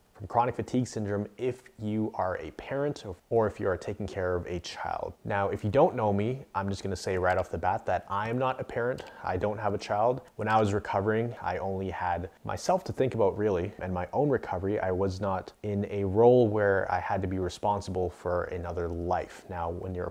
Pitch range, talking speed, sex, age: 95-115 Hz, 225 wpm, male, 30-49